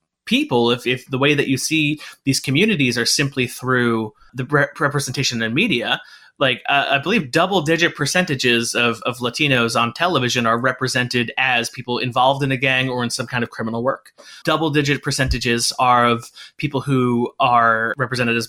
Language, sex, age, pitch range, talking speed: English, male, 30-49, 120-140 Hz, 175 wpm